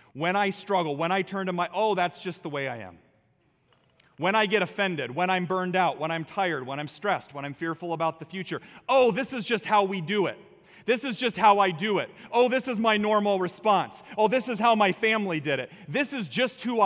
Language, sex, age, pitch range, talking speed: English, male, 30-49, 170-210 Hz, 240 wpm